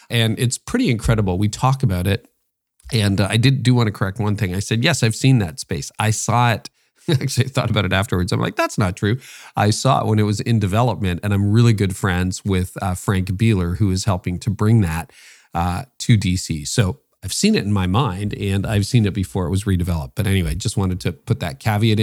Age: 40-59